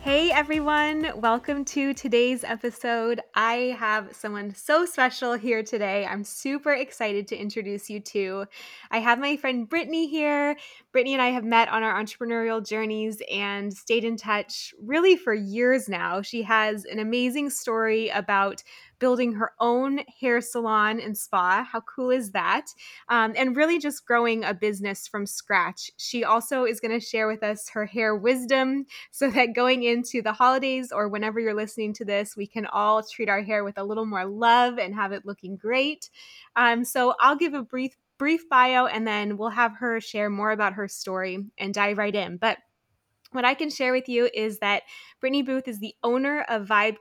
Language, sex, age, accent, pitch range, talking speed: English, female, 20-39, American, 215-255 Hz, 185 wpm